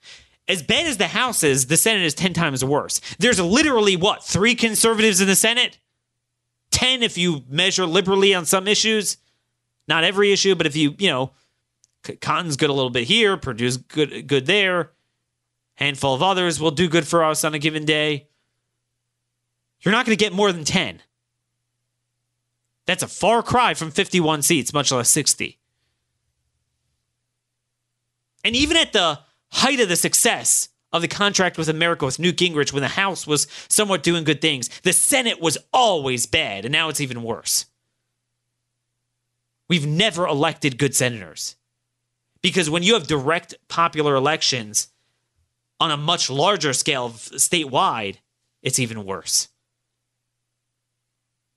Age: 30-49